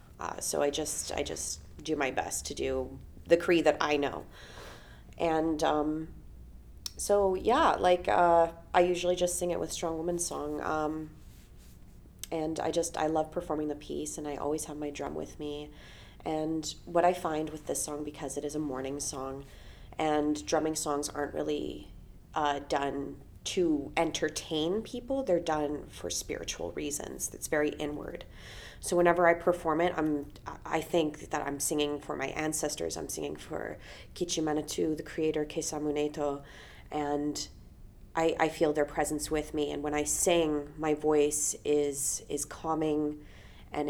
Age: 30-49